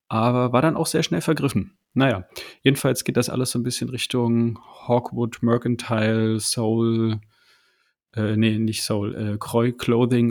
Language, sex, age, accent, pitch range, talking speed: German, male, 30-49, German, 110-130 Hz, 145 wpm